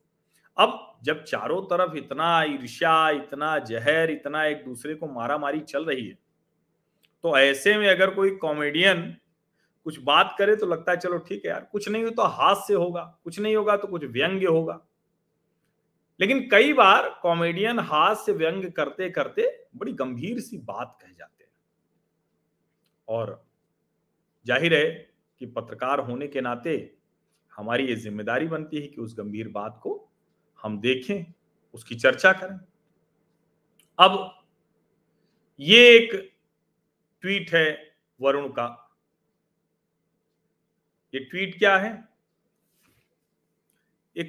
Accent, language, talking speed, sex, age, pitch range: native, Hindi, 130 wpm, male, 40-59, 145-195 Hz